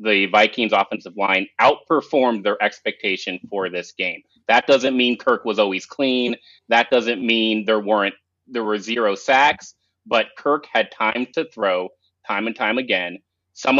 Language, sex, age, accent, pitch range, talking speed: English, male, 30-49, American, 100-120 Hz, 160 wpm